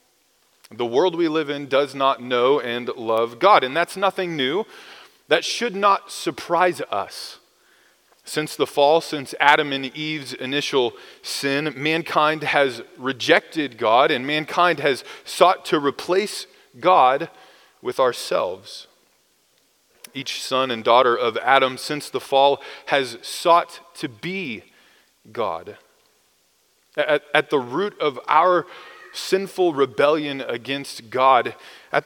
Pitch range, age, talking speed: 140-190 Hz, 30-49, 125 wpm